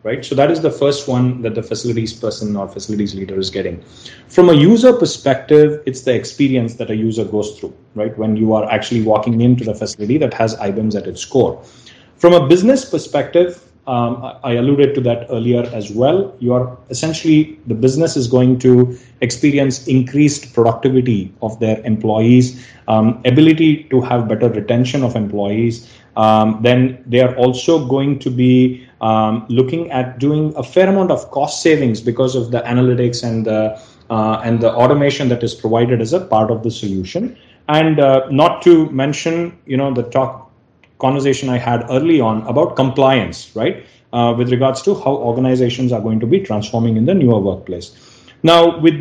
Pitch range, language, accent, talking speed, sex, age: 115-140 Hz, English, Indian, 180 wpm, male, 30-49